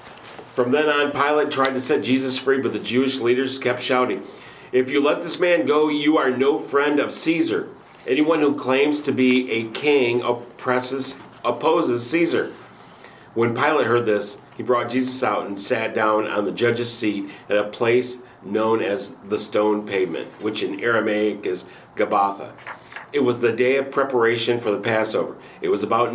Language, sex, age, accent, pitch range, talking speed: English, male, 40-59, American, 115-140 Hz, 175 wpm